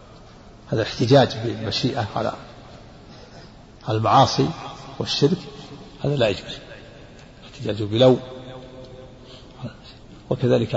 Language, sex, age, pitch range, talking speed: Arabic, male, 60-79, 110-130 Hz, 65 wpm